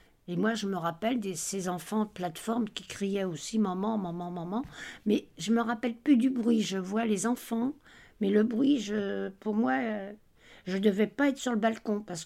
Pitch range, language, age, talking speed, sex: 185-225 Hz, English, 60-79, 210 wpm, female